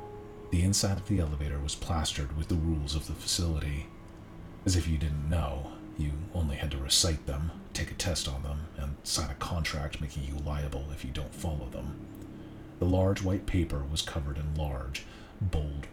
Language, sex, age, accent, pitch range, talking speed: English, male, 40-59, American, 75-95 Hz, 190 wpm